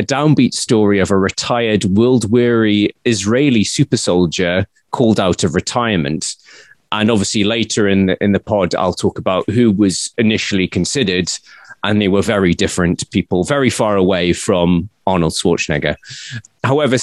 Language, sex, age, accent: English, male, 30-49, British